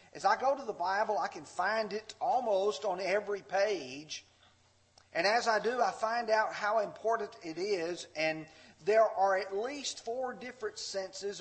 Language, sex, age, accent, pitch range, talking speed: English, male, 40-59, American, 150-235 Hz, 175 wpm